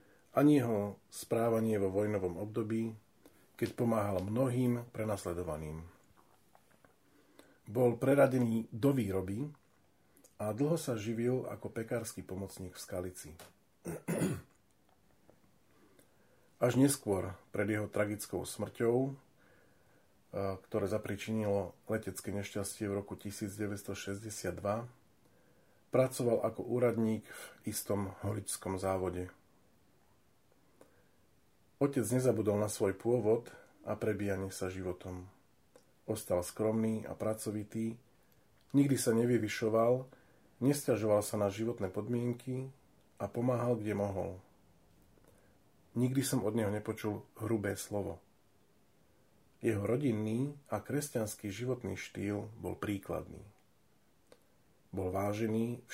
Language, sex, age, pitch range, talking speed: Slovak, male, 40-59, 100-120 Hz, 90 wpm